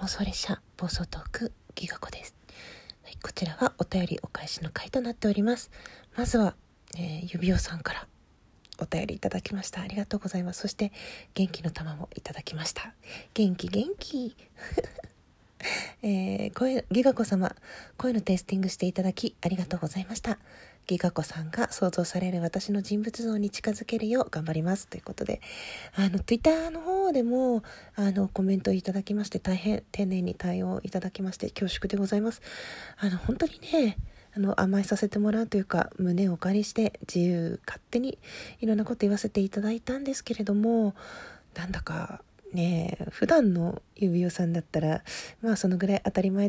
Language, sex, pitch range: Japanese, female, 180-225 Hz